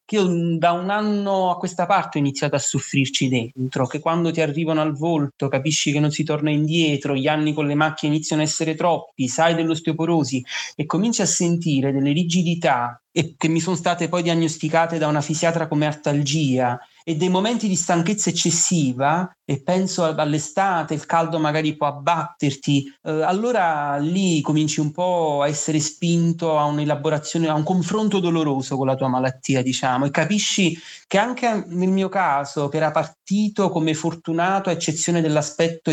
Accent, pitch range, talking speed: native, 145-175 Hz, 170 wpm